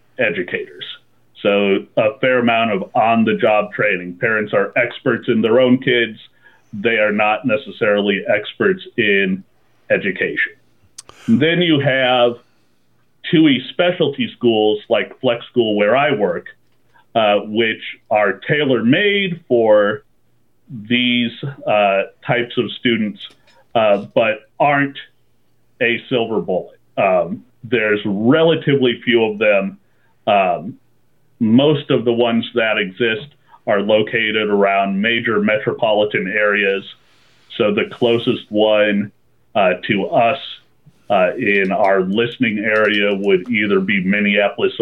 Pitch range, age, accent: 105-145 Hz, 40-59, American